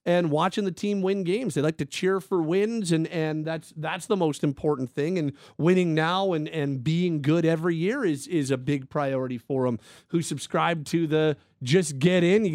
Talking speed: 210 wpm